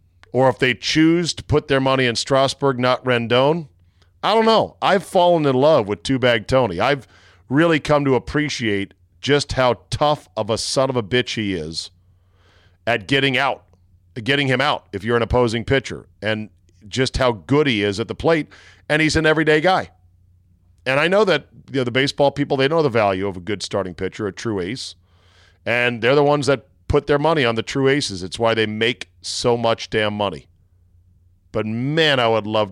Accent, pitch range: American, 95-135 Hz